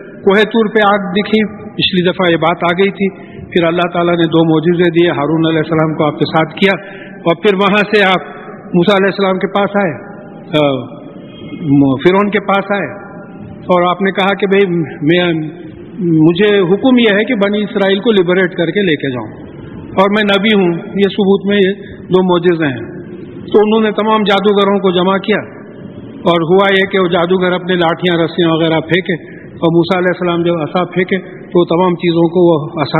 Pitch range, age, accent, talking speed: 170-200 Hz, 50-69, Indian, 145 wpm